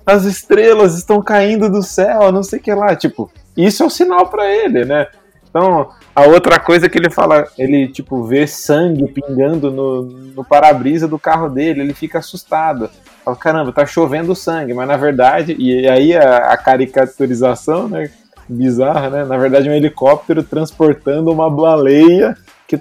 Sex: male